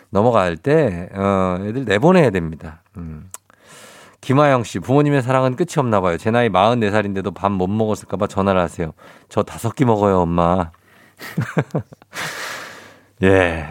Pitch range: 95-130 Hz